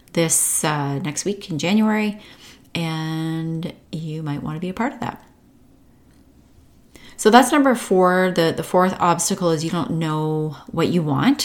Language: English